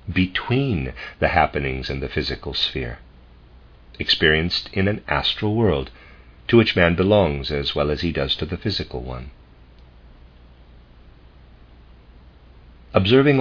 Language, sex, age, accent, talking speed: English, male, 50-69, American, 115 wpm